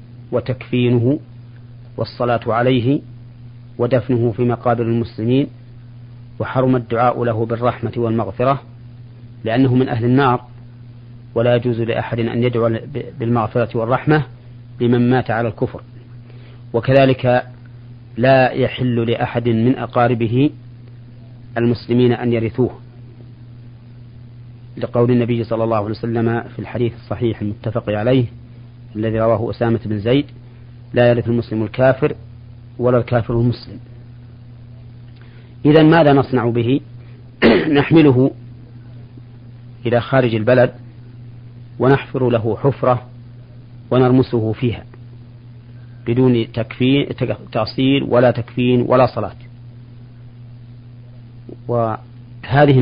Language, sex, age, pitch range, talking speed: Arabic, male, 40-59, 120-125 Hz, 90 wpm